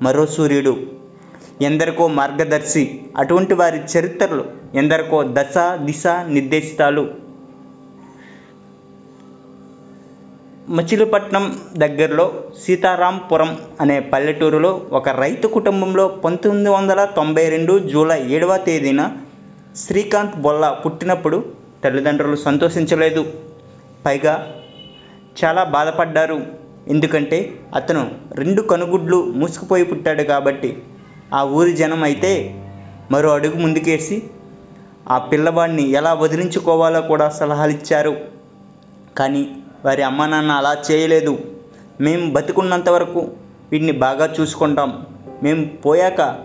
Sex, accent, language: male, native, Telugu